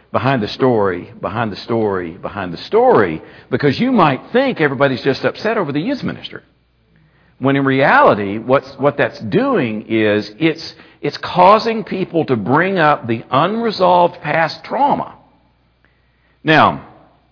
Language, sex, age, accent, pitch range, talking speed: English, male, 60-79, American, 105-150 Hz, 140 wpm